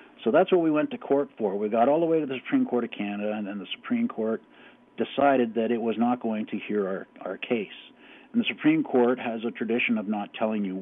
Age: 50-69